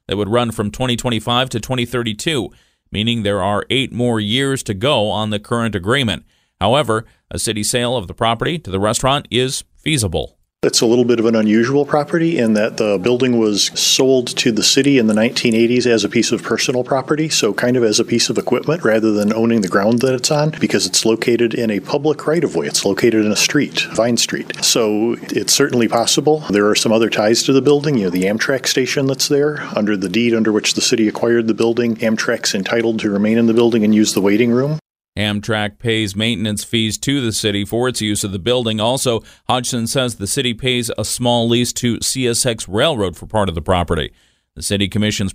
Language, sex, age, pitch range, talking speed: English, male, 40-59, 105-125 Hz, 215 wpm